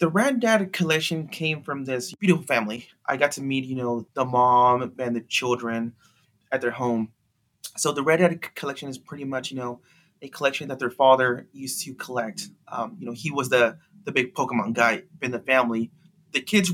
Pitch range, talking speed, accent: 125-155 Hz, 200 wpm, American